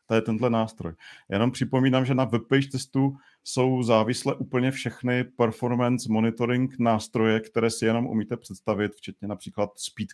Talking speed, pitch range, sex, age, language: 150 wpm, 110-125 Hz, male, 40-59, Czech